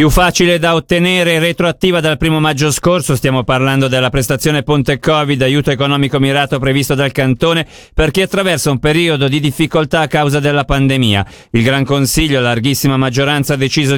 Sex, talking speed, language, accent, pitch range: male, 170 wpm, Italian, native, 130-165 Hz